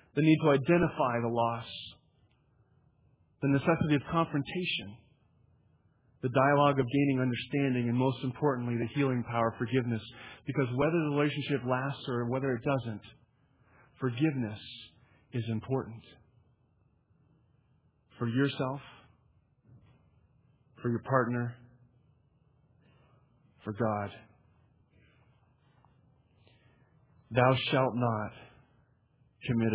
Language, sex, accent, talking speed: English, male, American, 95 wpm